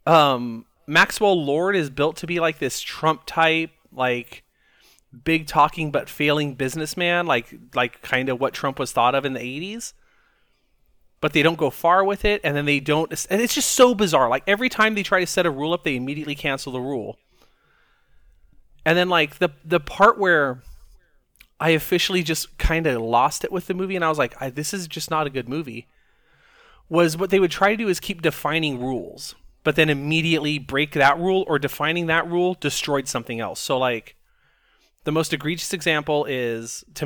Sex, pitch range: male, 130-175 Hz